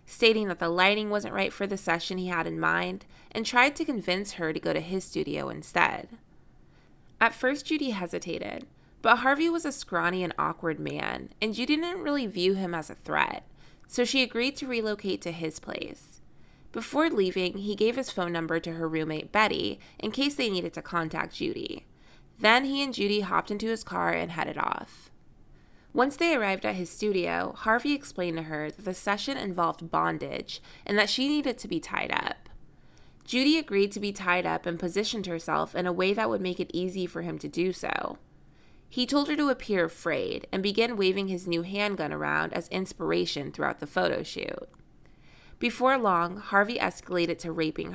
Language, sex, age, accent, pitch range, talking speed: English, female, 20-39, American, 175-255 Hz, 190 wpm